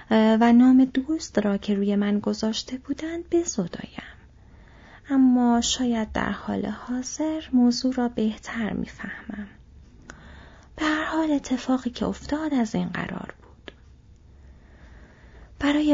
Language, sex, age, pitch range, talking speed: Persian, female, 30-49, 185-265 Hz, 115 wpm